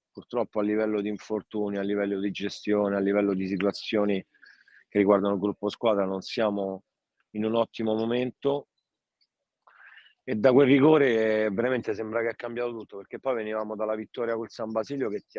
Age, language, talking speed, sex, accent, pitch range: 30-49, Italian, 170 wpm, male, native, 100-115 Hz